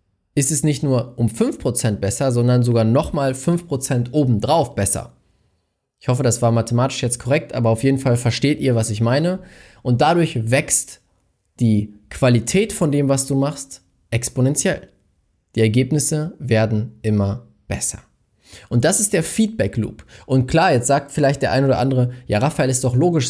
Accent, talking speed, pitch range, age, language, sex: German, 165 wpm, 115-145 Hz, 20-39, German, male